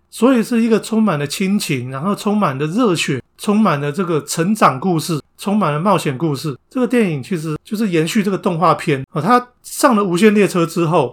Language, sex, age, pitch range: Chinese, male, 30-49, 150-215 Hz